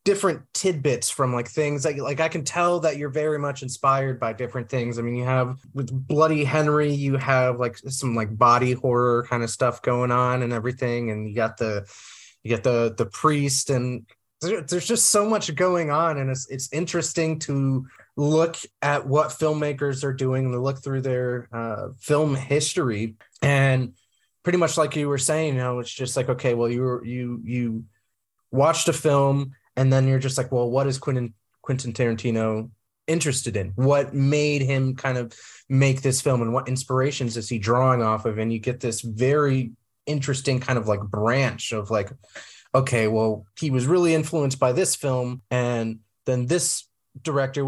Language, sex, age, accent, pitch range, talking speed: English, male, 20-39, American, 120-145 Hz, 190 wpm